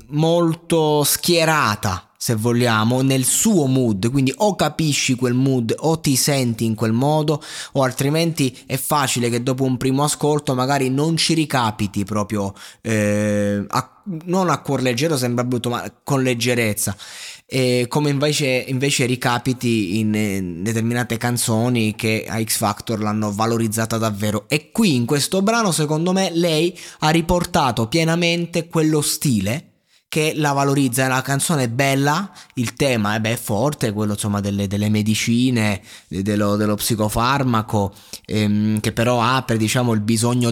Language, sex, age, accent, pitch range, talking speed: Italian, male, 20-39, native, 110-140 Hz, 150 wpm